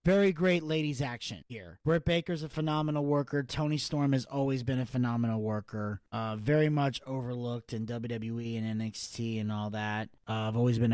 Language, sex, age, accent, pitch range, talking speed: English, male, 30-49, American, 115-135 Hz, 180 wpm